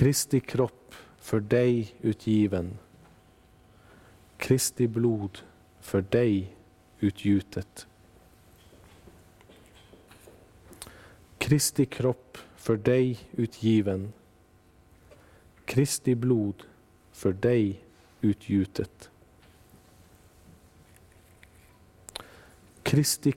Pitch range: 90-115 Hz